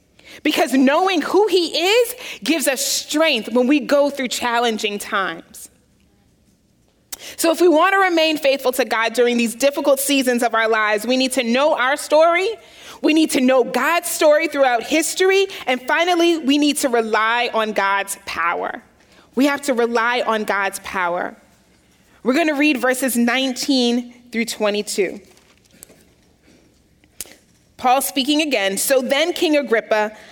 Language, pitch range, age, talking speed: English, 215-290 Hz, 30-49, 150 wpm